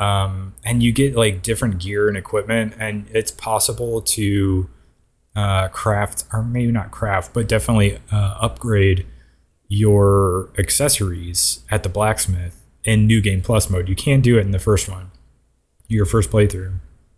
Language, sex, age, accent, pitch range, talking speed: English, male, 20-39, American, 95-115 Hz, 155 wpm